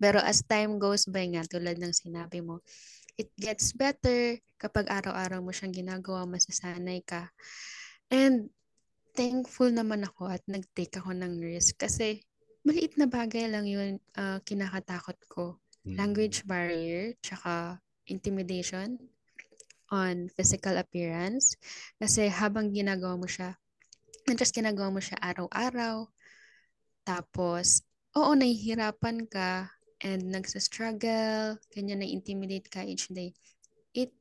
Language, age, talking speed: Filipino, 20-39, 120 wpm